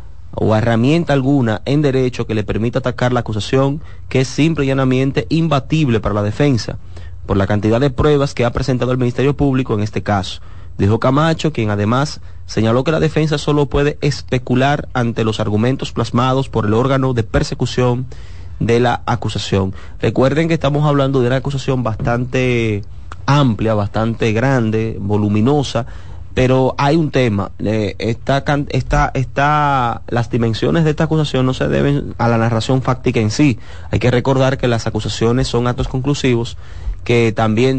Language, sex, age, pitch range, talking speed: Spanish, male, 30-49, 110-135 Hz, 160 wpm